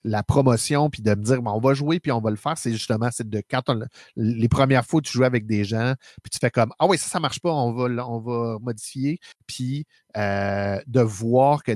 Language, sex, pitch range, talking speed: French, male, 110-135 Hz, 245 wpm